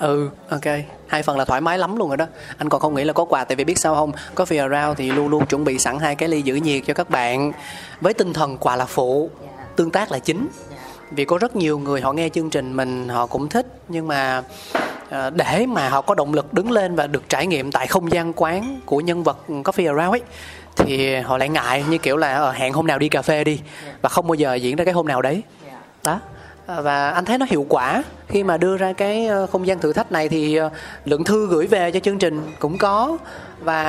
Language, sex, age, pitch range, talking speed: Vietnamese, male, 20-39, 140-180 Hz, 245 wpm